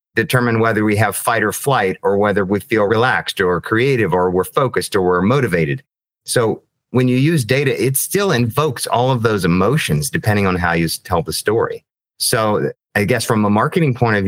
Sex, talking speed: male, 200 wpm